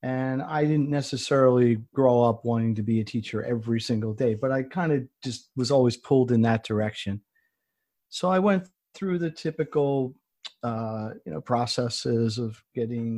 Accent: American